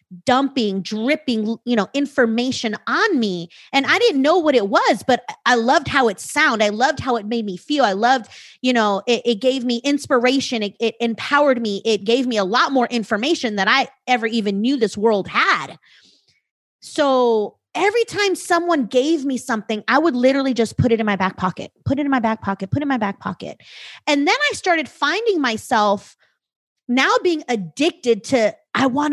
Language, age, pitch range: English, 30-49, 235-340 Hz